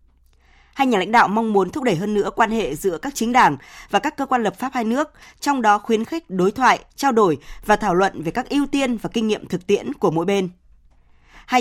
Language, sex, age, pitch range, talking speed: Vietnamese, female, 20-39, 190-250 Hz, 250 wpm